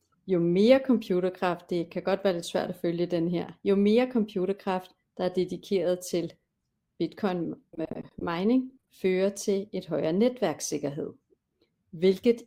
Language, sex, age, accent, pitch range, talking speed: Danish, female, 40-59, native, 170-205 Hz, 130 wpm